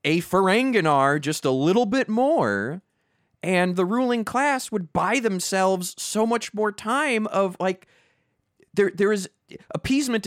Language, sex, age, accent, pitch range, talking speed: English, male, 30-49, American, 125-180 Hz, 140 wpm